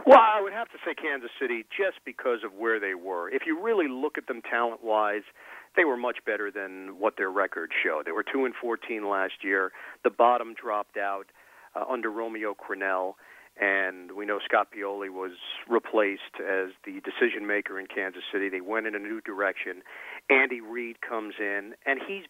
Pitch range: 105-160 Hz